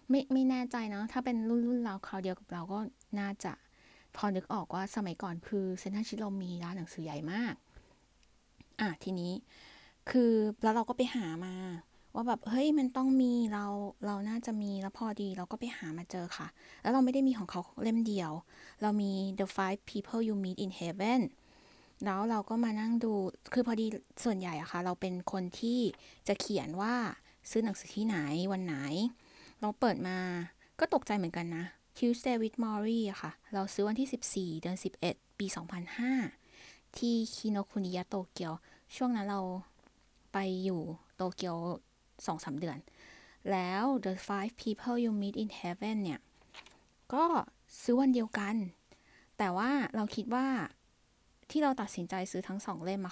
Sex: female